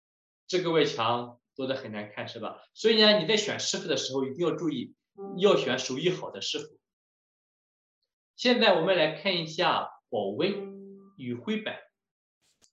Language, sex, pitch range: Chinese, male, 150-250 Hz